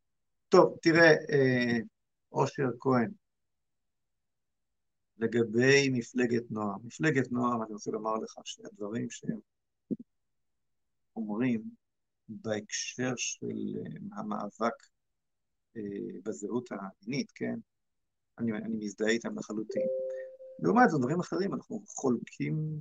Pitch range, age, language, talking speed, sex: 115-145 Hz, 50-69, Hebrew, 85 wpm, male